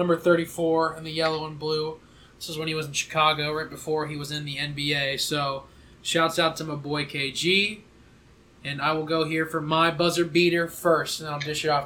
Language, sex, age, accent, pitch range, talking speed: English, male, 20-39, American, 145-170 Hz, 220 wpm